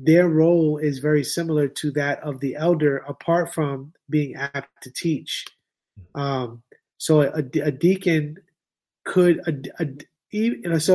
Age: 20-39